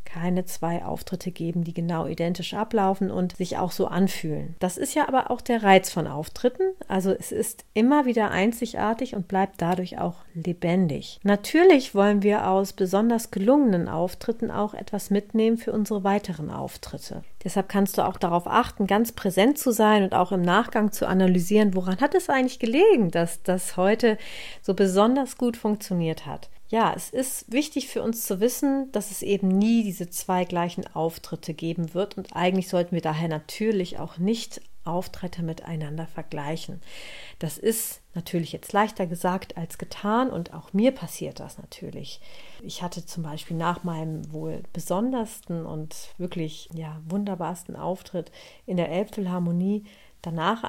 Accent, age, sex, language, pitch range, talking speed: German, 40-59, female, German, 175-220 Hz, 160 wpm